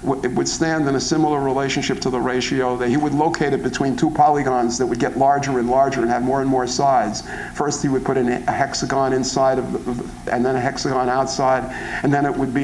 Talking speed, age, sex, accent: 235 wpm, 50-69, male, American